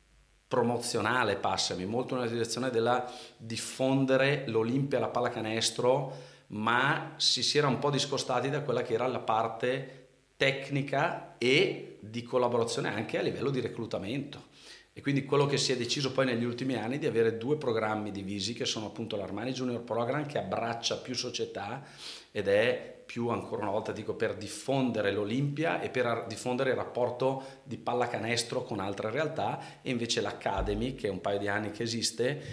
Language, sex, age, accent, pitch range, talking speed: Italian, male, 40-59, native, 115-130 Hz, 165 wpm